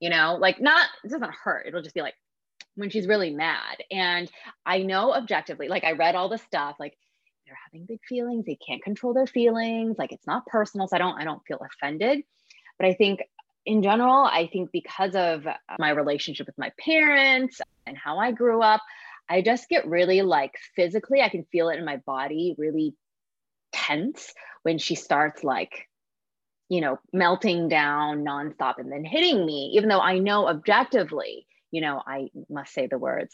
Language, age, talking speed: English, 20-39, 190 wpm